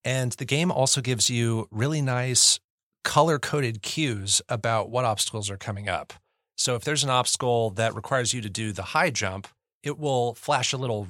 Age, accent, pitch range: 30-49, American, 105-125 Hz